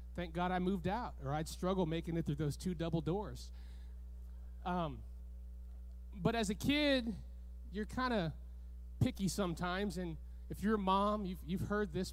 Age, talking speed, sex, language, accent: 30-49, 170 wpm, male, English, American